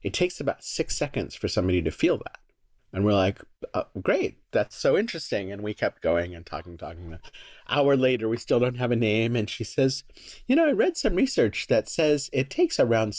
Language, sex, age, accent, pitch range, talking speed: English, male, 40-59, American, 95-135 Hz, 215 wpm